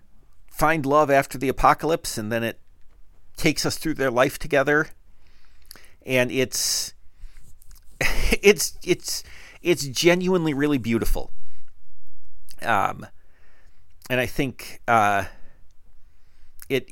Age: 50-69